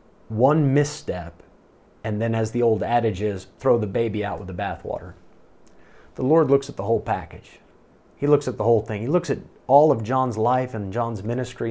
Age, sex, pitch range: 30-49, male, 110-140 Hz